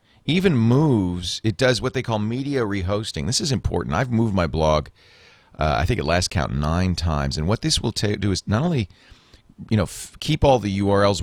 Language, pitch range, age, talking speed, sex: English, 85-115 Hz, 40-59, 215 wpm, male